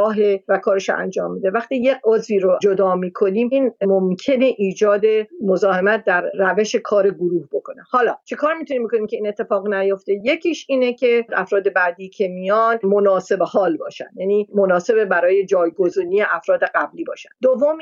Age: 50-69